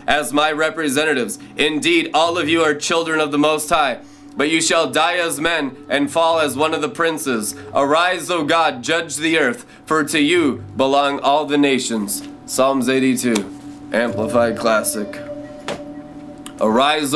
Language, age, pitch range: English, 20-39, 135-170 Hz